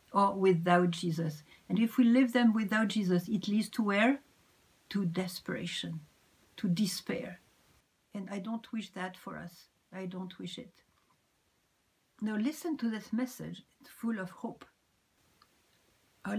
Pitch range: 190-250 Hz